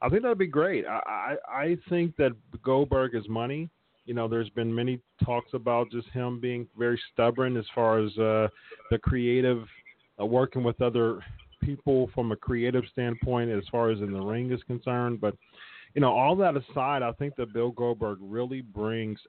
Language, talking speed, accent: English, 190 wpm, American